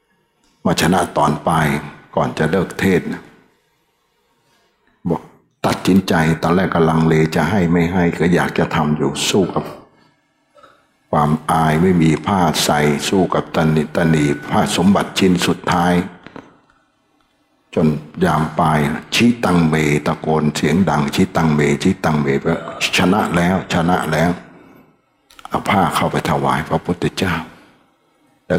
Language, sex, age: Thai, male, 60-79